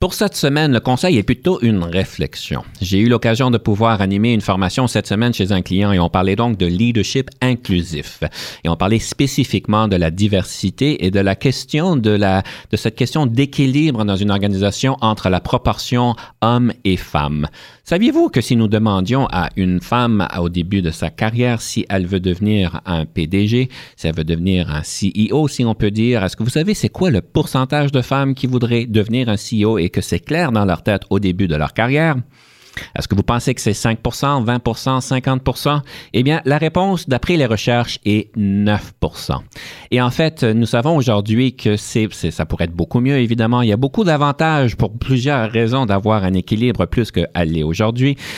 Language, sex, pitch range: French, male, 95-130 Hz